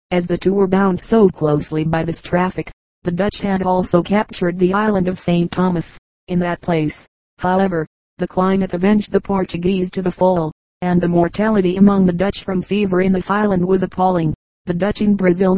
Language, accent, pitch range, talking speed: English, American, 175-195 Hz, 190 wpm